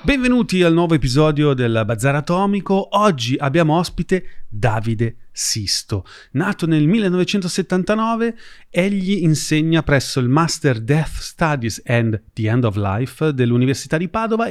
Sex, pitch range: male, 115-175 Hz